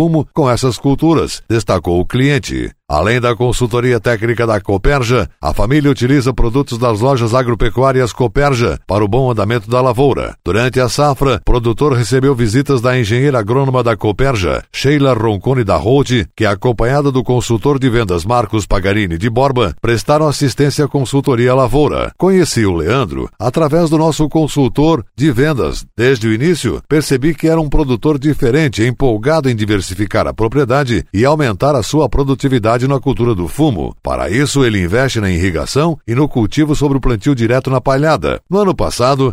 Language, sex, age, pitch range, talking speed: Portuguese, male, 60-79, 110-145 Hz, 165 wpm